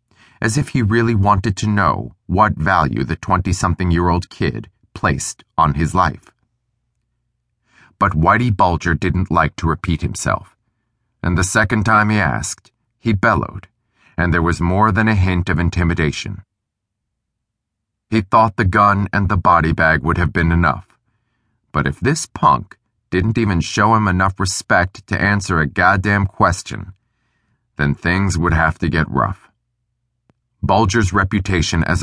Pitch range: 85-115 Hz